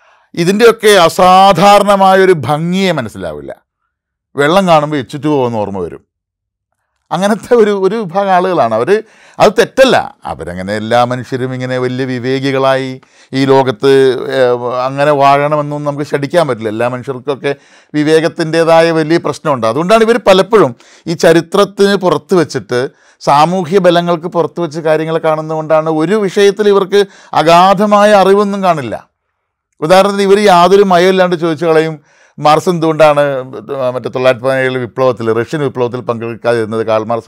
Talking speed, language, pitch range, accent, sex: 115 wpm, Malayalam, 130-185 Hz, native, male